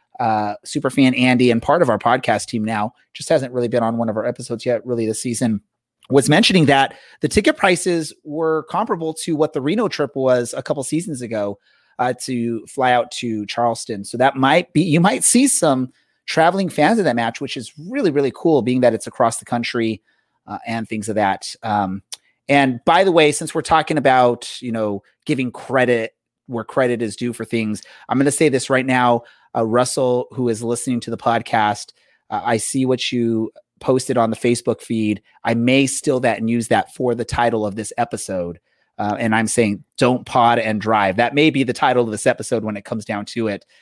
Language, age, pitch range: English, 30-49, 110-135 Hz